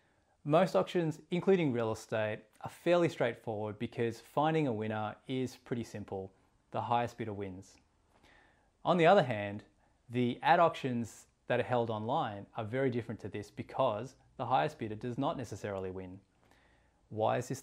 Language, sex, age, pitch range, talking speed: English, male, 20-39, 105-125 Hz, 155 wpm